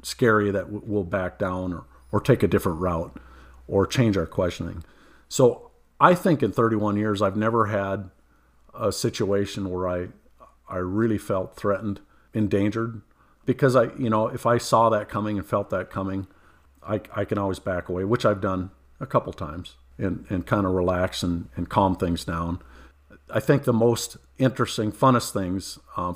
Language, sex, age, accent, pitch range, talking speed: English, male, 50-69, American, 90-110 Hz, 175 wpm